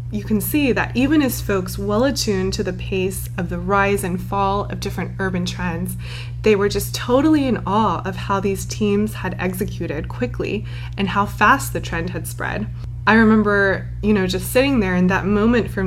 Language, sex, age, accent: Chinese, female, 20-39, American